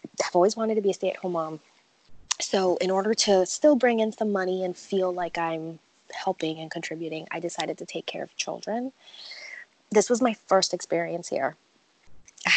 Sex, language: female, English